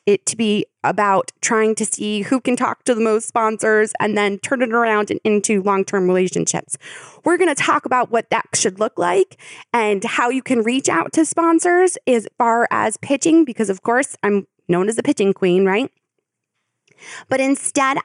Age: 20-39